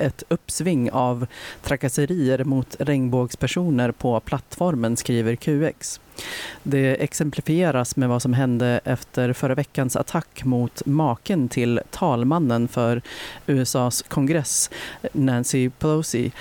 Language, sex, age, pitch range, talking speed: Swedish, female, 40-59, 120-145 Hz, 105 wpm